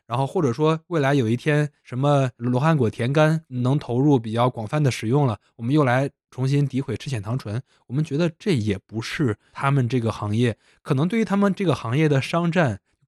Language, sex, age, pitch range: Chinese, male, 20-39, 115-150 Hz